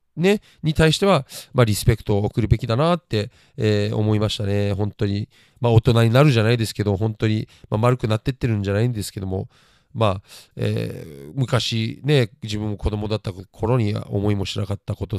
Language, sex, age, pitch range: Japanese, male, 40-59, 110-140 Hz